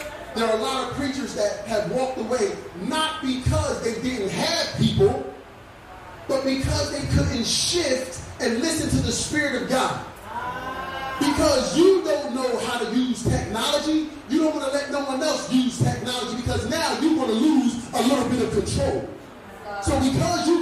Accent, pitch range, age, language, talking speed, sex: American, 245-315 Hz, 30-49, English, 175 wpm, male